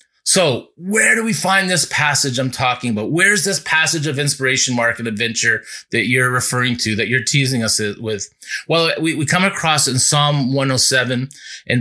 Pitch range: 125-170 Hz